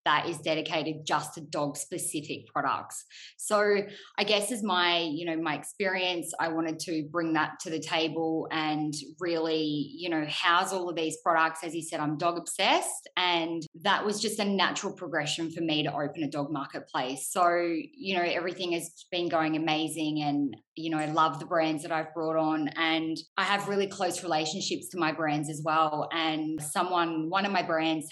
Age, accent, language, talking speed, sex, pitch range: 20-39, Australian, English, 190 wpm, female, 155-185 Hz